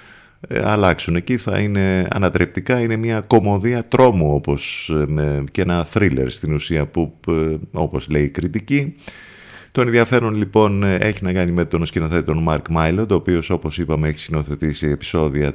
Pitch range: 75-100 Hz